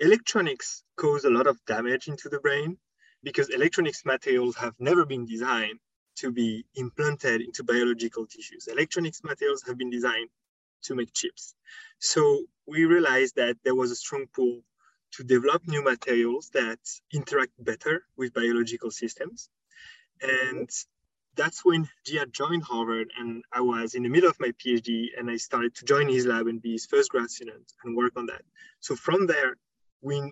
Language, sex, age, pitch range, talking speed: English, male, 20-39, 120-200 Hz, 170 wpm